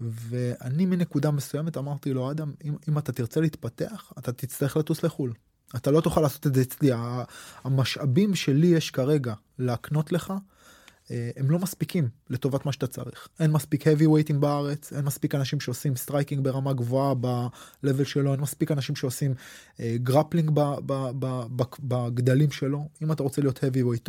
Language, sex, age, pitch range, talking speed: Hebrew, male, 20-39, 120-150 Hz, 165 wpm